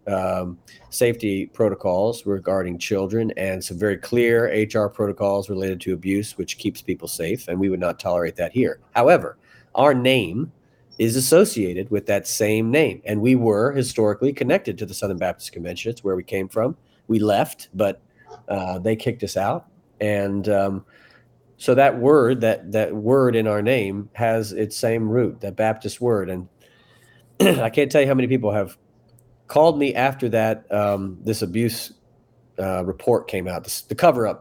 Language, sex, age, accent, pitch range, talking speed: English, male, 40-59, American, 95-120 Hz, 170 wpm